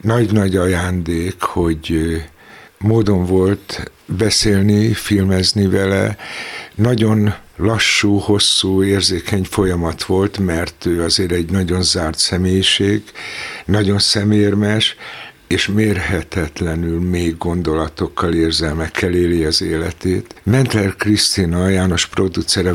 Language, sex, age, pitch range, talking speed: Hungarian, male, 60-79, 90-105 Hz, 90 wpm